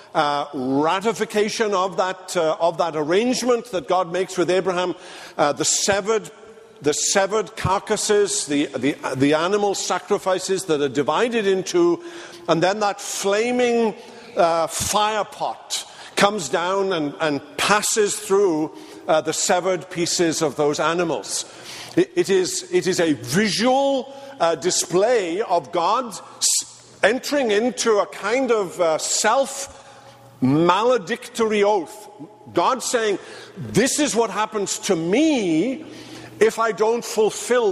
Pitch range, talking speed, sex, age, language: 170-225 Hz, 125 wpm, male, 50-69, English